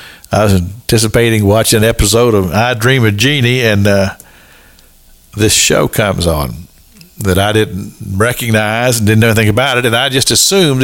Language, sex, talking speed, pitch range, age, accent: English, male, 170 wpm, 95-120 Hz, 50-69, American